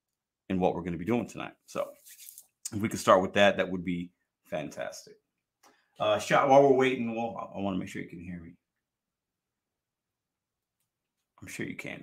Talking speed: 195 wpm